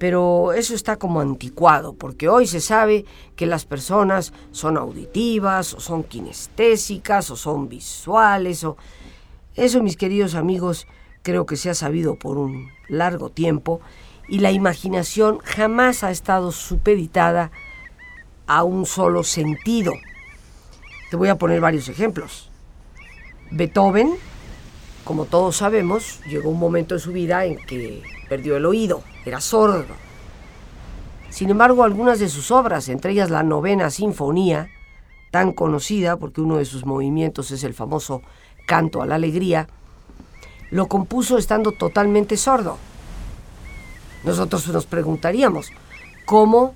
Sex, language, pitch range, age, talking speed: female, Spanish, 155-205 Hz, 50-69, 130 wpm